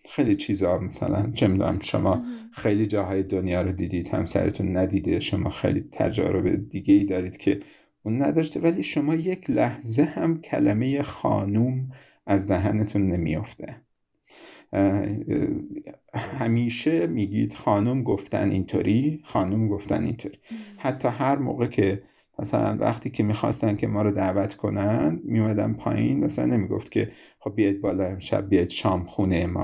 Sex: male